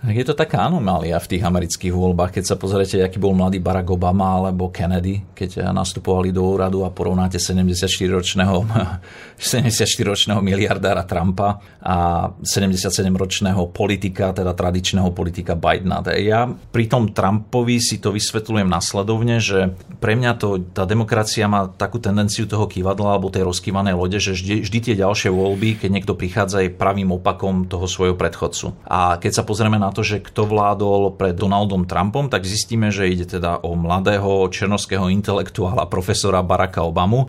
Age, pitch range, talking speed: 40-59, 95-105 Hz, 155 wpm